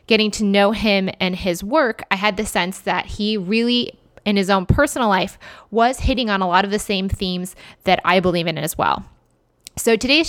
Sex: female